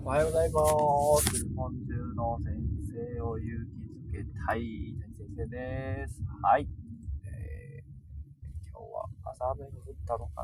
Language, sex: Japanese, male